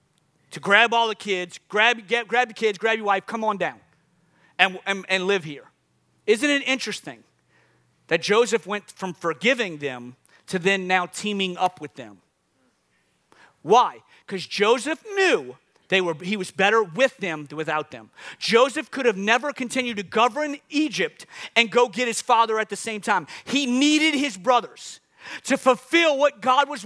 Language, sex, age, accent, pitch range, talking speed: English, male, 40-59, American, 155-260 Hz, 170 wpm